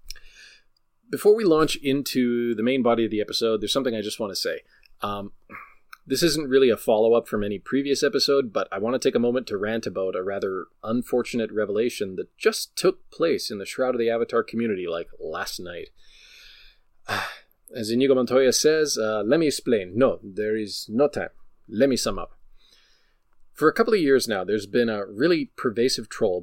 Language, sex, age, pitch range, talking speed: English, male, 30-49, 110-155 Hz, 190 wpm